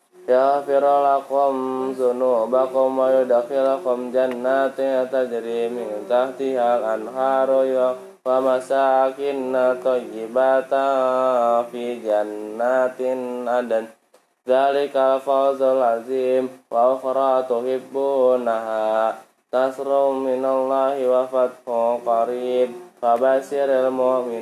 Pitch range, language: 125-135 Hz, Indonesian